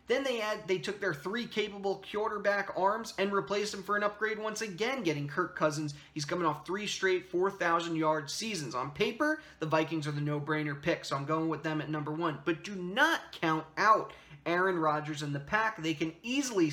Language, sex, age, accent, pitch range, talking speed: English, male, 20-39, American, 150-190 Hz, 205 wpm